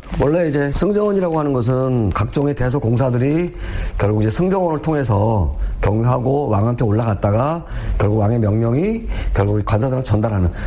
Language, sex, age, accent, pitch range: Korean, male, 40-59, native, 105-160 Hz